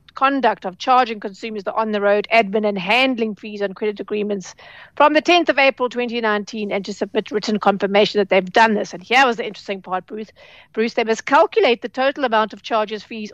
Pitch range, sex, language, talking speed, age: 205-270 Hz, female, English, 200 wpm, 50-69